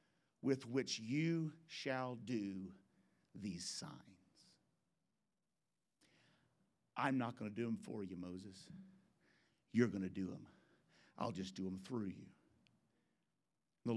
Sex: male